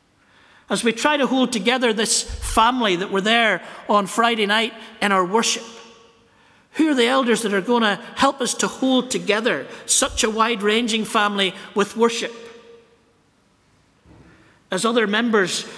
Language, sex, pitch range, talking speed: English, male, 190-245 Hz, 150 wpm